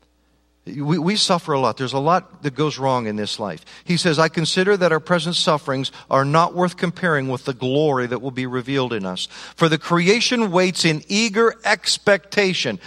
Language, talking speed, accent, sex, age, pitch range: English, 190 wpm, American, male, 50-69, 155-200 Hz